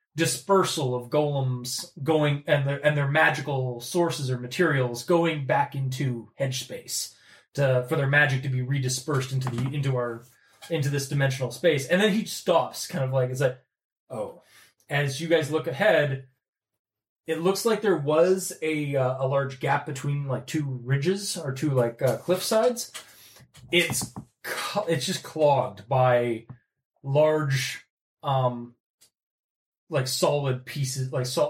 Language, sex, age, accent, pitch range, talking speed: English, male, 20-39, American, 130-170 Hz, 150 wpm